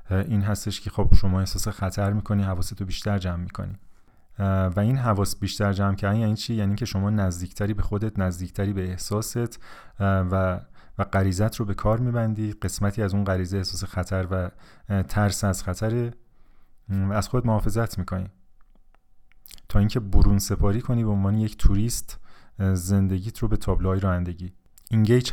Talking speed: 155 wpm